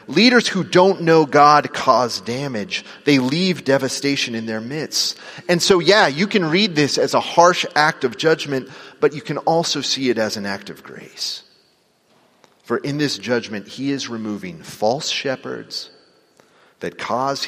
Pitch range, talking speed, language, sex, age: 110-145 Hz, 165 wpm, English, male, 40-59